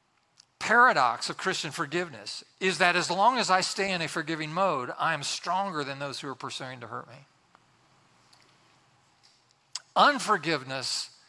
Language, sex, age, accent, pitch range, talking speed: English, male, 40-59, American, 145-195 Hz, 145 wpm